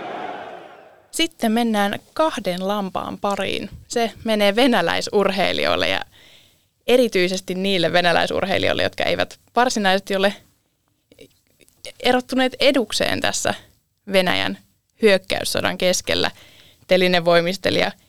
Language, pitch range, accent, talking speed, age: English, 180-220 Hz, Finnish, 80 wpm, 20-39